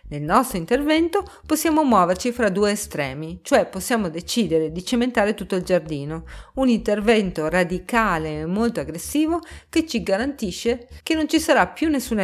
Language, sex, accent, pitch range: Italian, female, native, 165-250 Hz